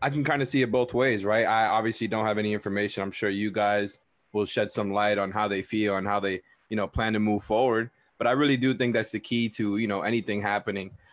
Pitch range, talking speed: 105-120 Hz, 265 wpm